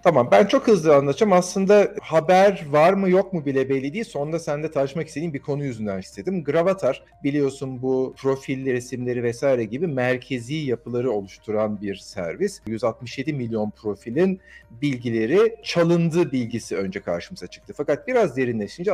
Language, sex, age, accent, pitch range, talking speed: Turkish, male, 50-69, native, 120-160 Hz, 150 wpm